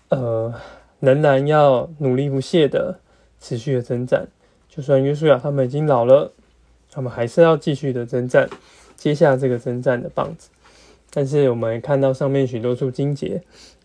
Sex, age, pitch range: male, 20-39, 125-150 Hz